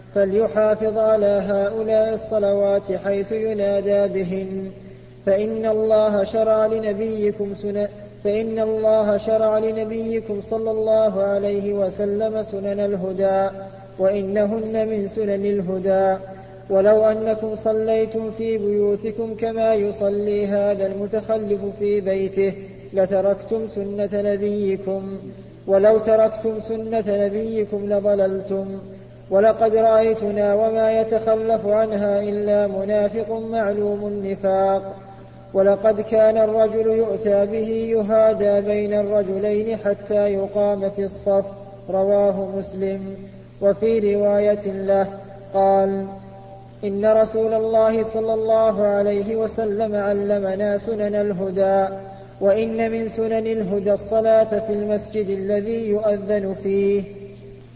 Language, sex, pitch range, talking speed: Arabic, male, 195-220 Hz, 95 wpm